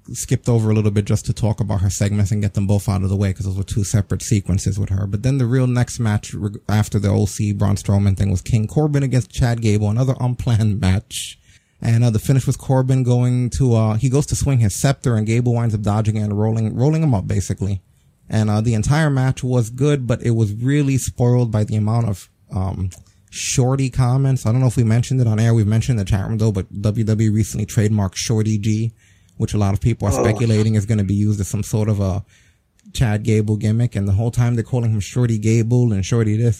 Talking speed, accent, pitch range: 240 wpm, American, 105-125 Hz